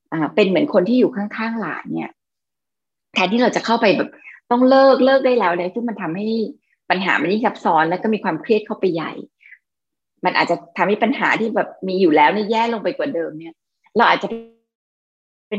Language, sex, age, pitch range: Thai, female, 20-39, 175-230 Hz